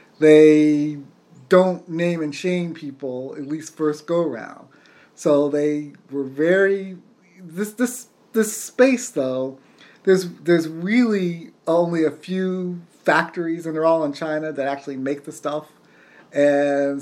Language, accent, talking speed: English, American, 135 wpm